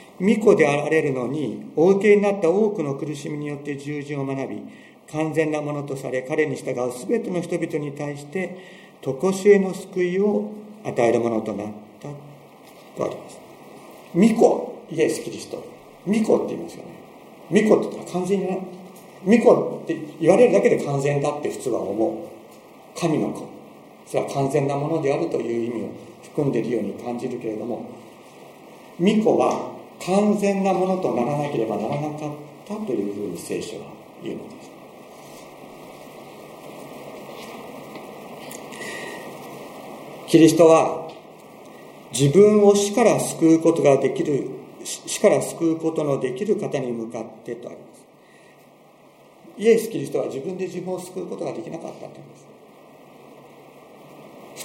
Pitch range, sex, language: 140-200 Hz, male, Japanese